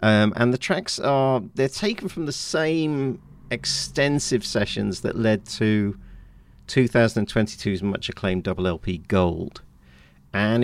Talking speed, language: 120 wpm, English